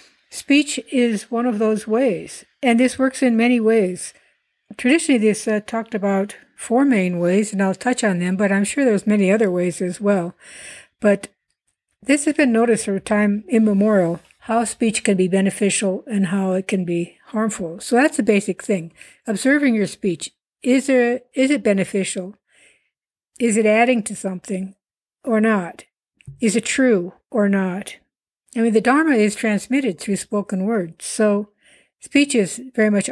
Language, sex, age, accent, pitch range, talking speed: English, female, 60-79, American, 195-240 Hz, 170 wpm